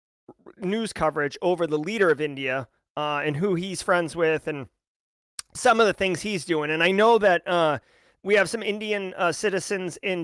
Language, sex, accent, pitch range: English, male, American, 175-250 Hz